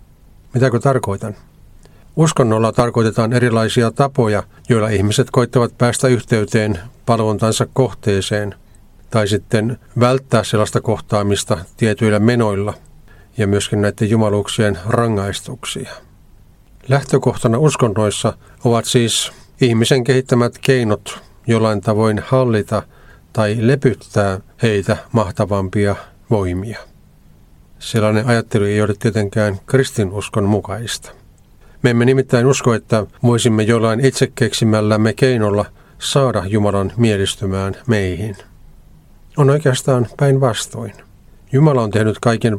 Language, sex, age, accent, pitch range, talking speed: Finnish, male, 40-59, native, 105-120 Hz, 95 wpm